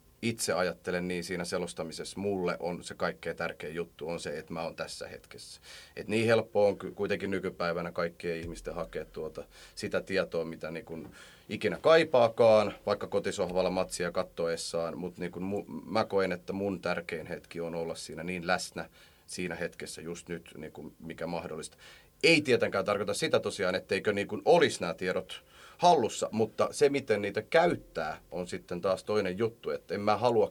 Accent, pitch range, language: native, 85-110 Hz, Finnish